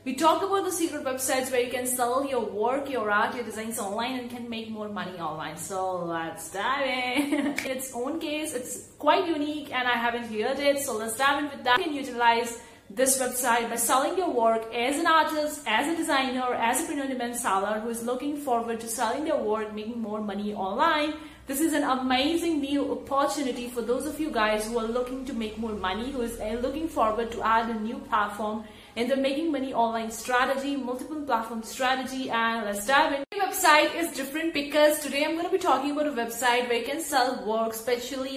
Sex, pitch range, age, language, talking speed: female, 225-285 Hz, 30-49, English, 215 wpm